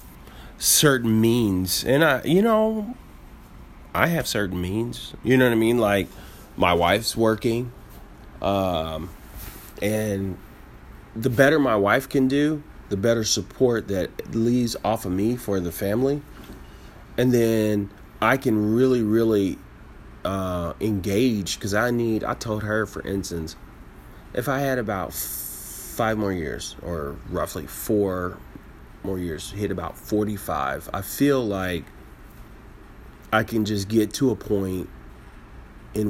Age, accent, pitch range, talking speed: 30-49, American, 95-120 Hz, 135 wpm